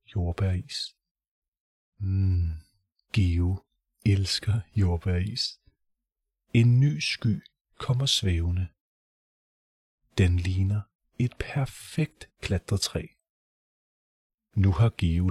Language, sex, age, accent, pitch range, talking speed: Danish, male, 30-49, native, 90-115 Hz, 70 wpm